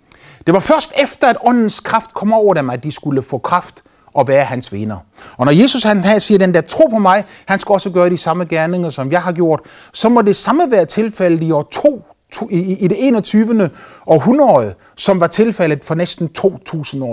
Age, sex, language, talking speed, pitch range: 30-49, male, Danish, 210 wpm, 140-210 Hz